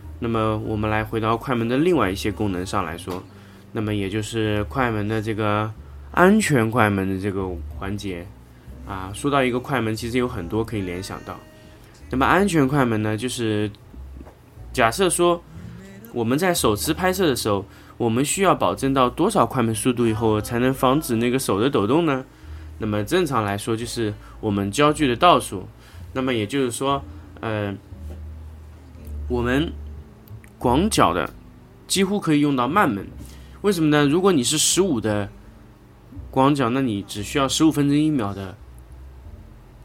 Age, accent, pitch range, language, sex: 20-39, native, 100-130 Hz, Chinese, male